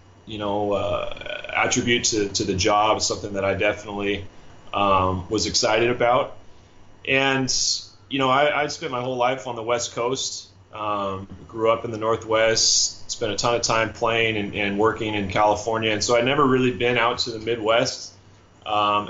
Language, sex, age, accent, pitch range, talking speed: English, male, 20-39, American, 100-120 Hz, 180 wpm